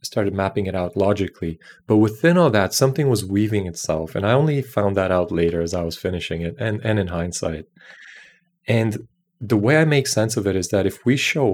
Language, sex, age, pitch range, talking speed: English, male, 30-49, 95-115 Hz, 220 wpm